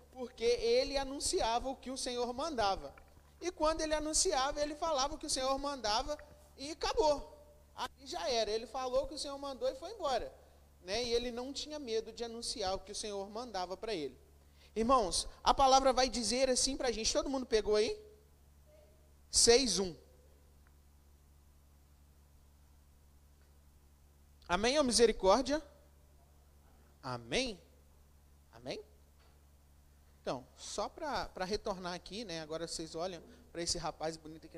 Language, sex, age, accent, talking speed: Portuguese, male, 30-49, Brazilian, 140 wpm